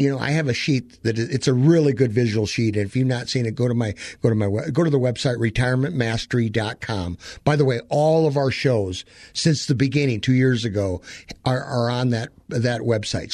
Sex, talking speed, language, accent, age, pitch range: male, 230 wpm, English, American, 50-69, 115-145 Hz